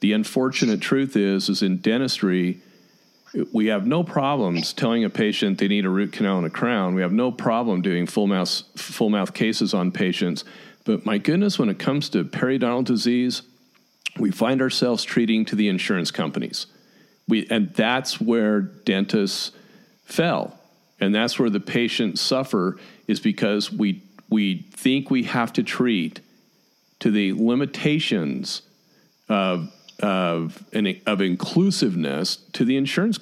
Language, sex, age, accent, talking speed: English, male, 50-69, American, 150 wpm